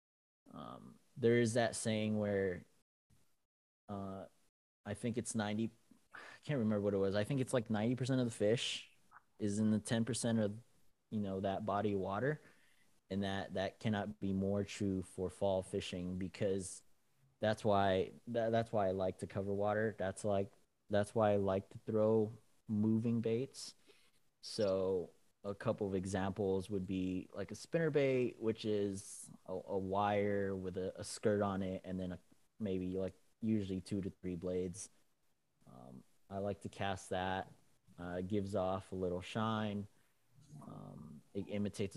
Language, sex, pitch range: English, male, 95-110 Hz